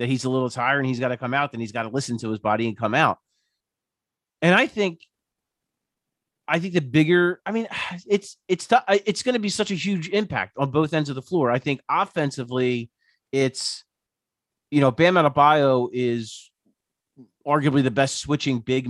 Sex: male